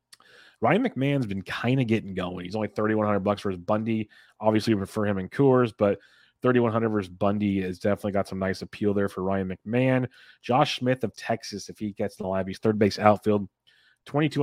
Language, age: English, 30-49